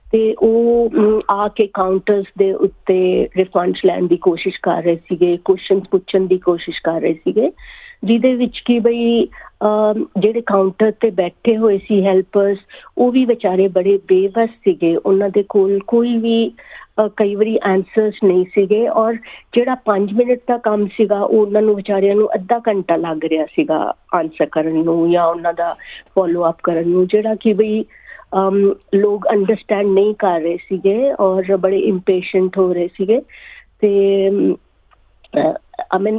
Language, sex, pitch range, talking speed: Punjabi, female, 185-220 Hz, 155 wpm